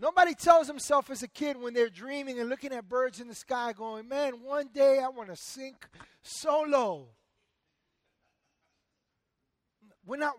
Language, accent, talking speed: English, American, 160 wpm